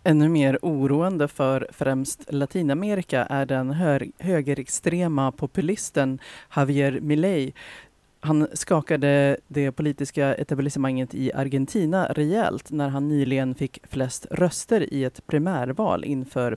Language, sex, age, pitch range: Swedish, female, 30-49, 135-155 Hz